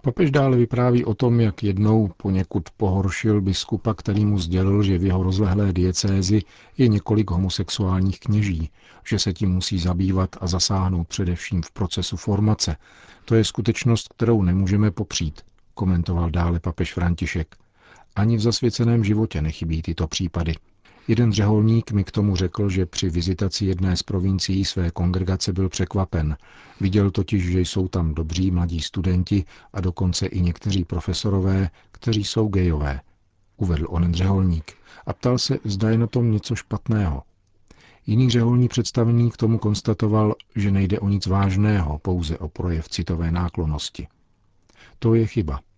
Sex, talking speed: male, 145 wpm